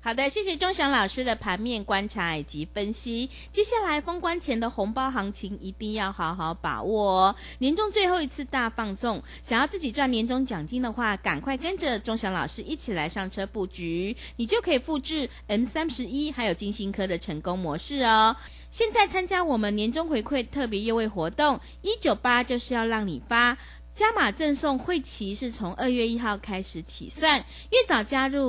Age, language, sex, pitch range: 30-49, Chinese, female, 195-290 Hz